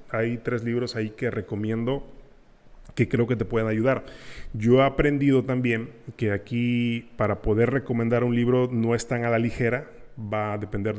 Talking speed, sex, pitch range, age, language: 175 wpm, male, 110-125 Hz, 30-49, Spanish